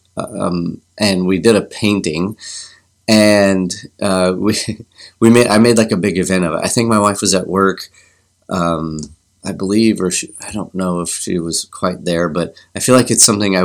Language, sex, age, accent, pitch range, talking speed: English, male, 30-49, American, 90-105 Hz, 200 wpm